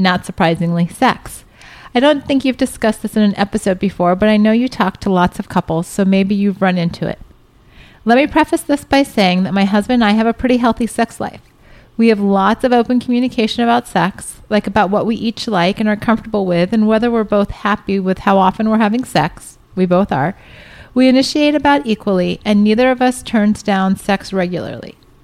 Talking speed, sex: 210 wpm, female